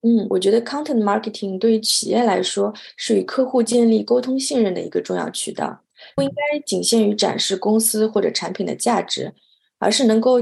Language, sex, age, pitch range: Chinese, female, 20-39, 200-240 Hz